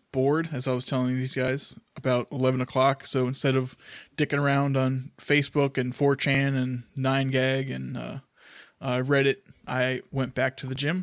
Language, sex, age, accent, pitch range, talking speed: English, male, 20-39, American, 130-140 Hz, 170 wpm